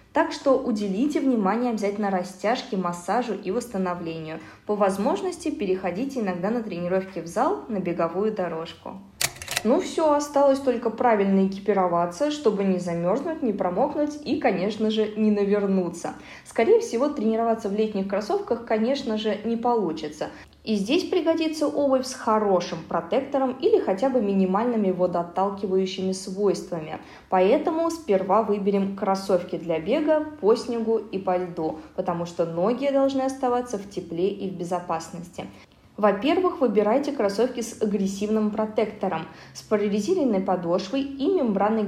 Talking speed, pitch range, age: 130 wpm, 185-255 Hz, 20-39